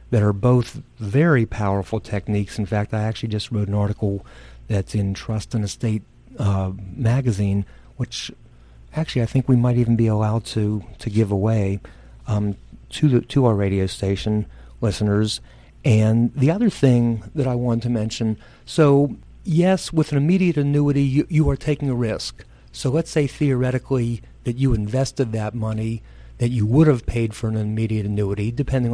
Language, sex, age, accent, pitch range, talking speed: English, male, 50-69, American, 105-130 Hz, 170 wpm